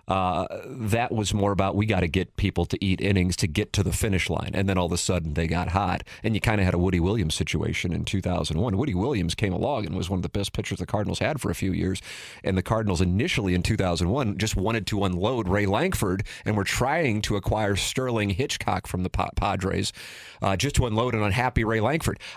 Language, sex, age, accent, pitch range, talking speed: English, male, 40-59, American, 95-125 Hz, 235 wpm